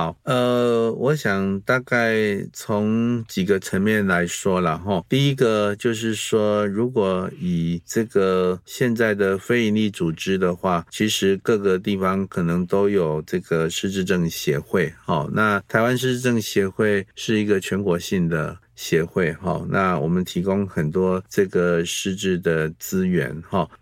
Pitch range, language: 85-110 Hz, Chinese